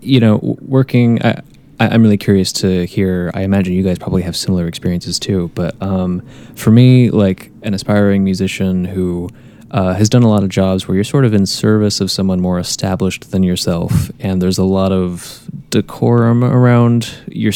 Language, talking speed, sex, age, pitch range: English, 180 wpm, male, 20-39, 95-115 Hz